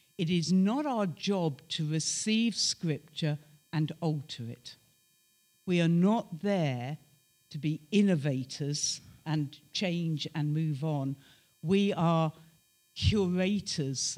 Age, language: 50-69, English